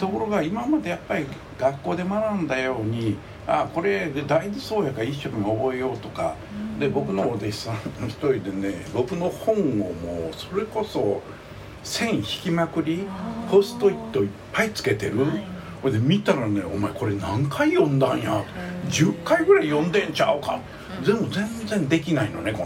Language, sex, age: Japanese, male, 60-79